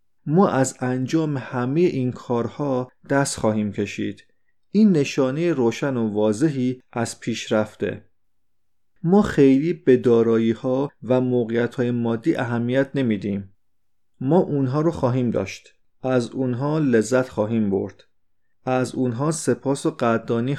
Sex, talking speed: male, 120 wpm